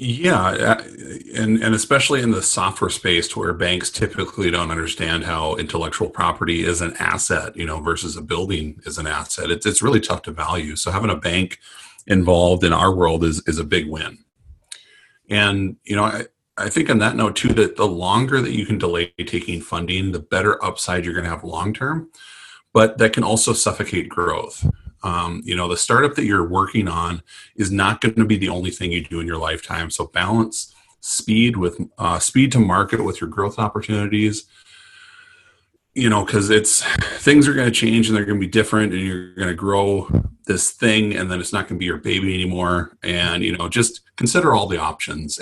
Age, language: 30-49, English